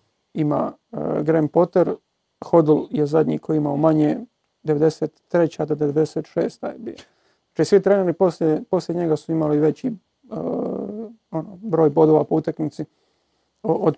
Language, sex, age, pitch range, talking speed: Croatian, male, 40-59, 150-175 Hz, 120 wpm